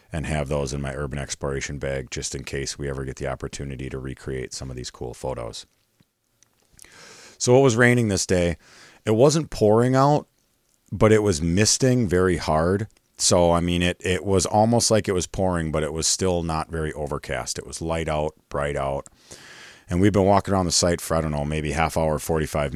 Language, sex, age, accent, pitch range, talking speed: English, male, 40-59, American, 75-95 Hz, 205 wpm